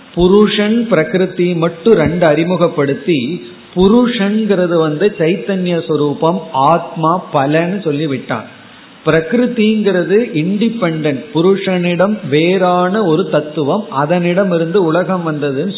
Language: Tamil